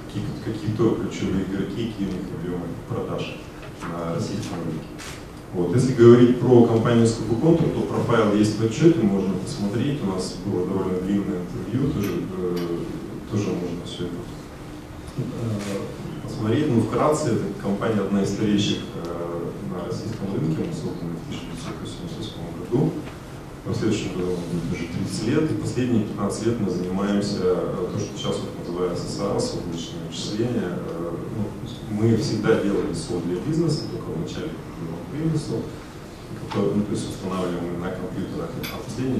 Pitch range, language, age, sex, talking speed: 95-115 Hz, Russian, 30-49, male, 130 wpm